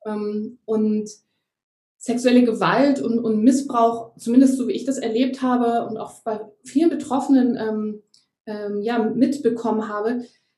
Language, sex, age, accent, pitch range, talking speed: German, female, 20-39, German, 215-255 Hz, 125 wpm